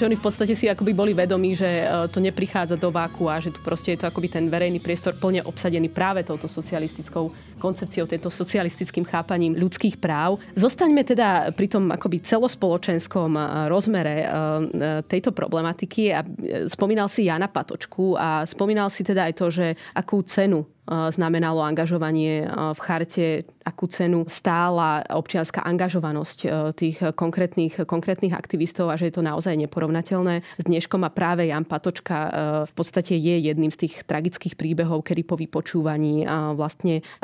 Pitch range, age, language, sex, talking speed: 165-190 Hz, 20-39, Slovak, female, 150 wpm